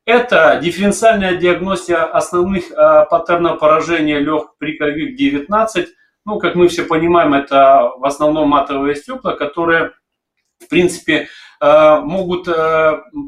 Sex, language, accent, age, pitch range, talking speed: male, Russian, native, 30-49, 155-205 Hz, 120 wpm